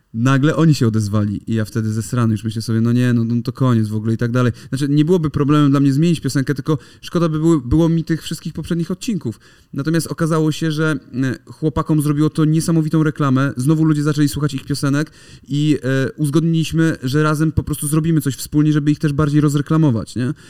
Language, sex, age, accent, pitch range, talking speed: Polish, male, 30-49, native, 120-150 Hz, 205 wpm